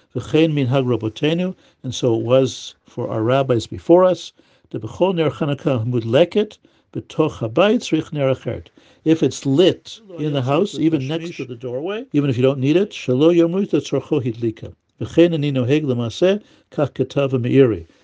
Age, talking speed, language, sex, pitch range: 60-79, 95 wpm, English, male, 120-160 Hz